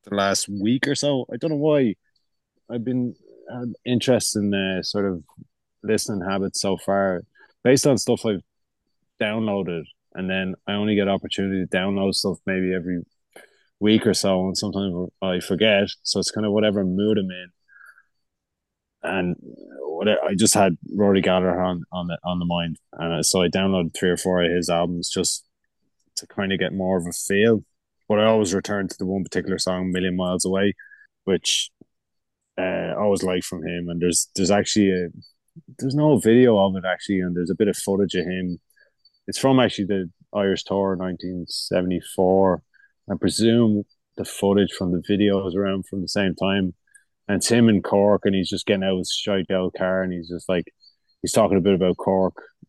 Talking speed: 190 wpm